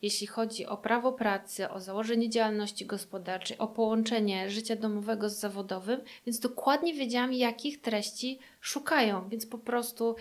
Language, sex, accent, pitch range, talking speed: Polish, female, native, 210-235 Hz, 140 wpm